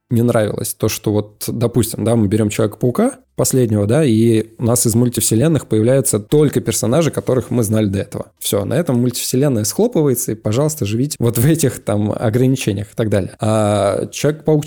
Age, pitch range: 20-39, 105-130 Hz